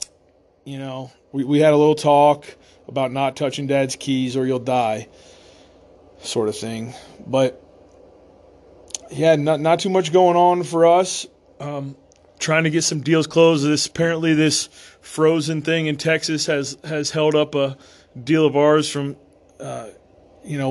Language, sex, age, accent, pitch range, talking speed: English, male, 30-49, American, 125-150 Hz, 160 wpm